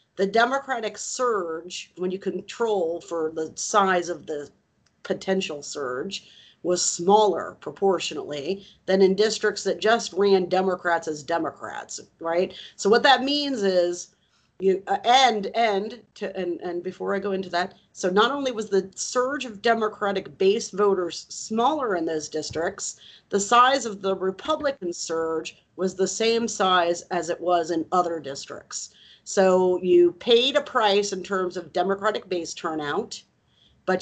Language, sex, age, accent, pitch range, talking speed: English, female, 40-59, American, 170-205 Hz, 150 wpm